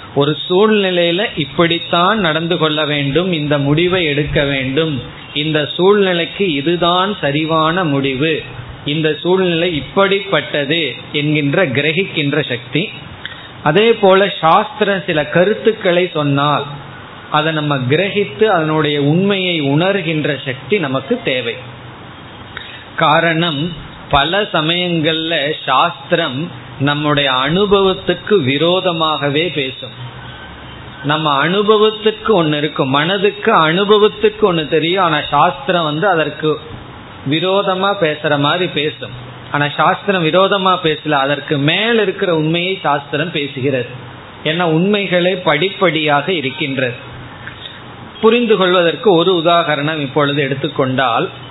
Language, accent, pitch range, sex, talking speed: Tamil, native, 145-180 Hz, male, 85 wpm